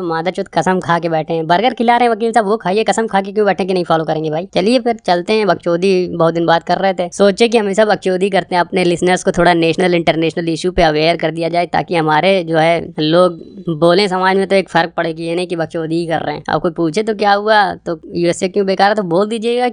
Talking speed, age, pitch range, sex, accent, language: 260 wpm, 20-39, 175-210 Hz, male, native, Hindi